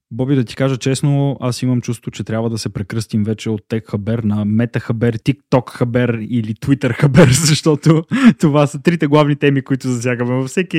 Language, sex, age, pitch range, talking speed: Bulgarian, male, 20-39, 110-145 Hz, 170 wpm